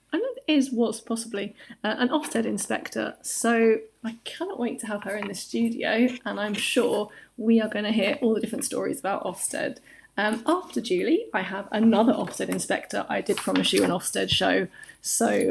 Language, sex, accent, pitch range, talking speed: English, female, British, 200-255 Hz, 180 wpm